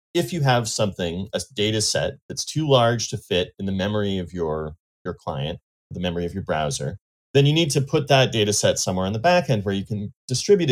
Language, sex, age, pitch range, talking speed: English, male, 30-49, 100-135 Hz, 230 wpm